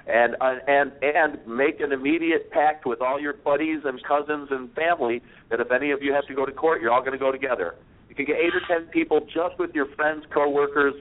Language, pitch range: English, 125-150 Hz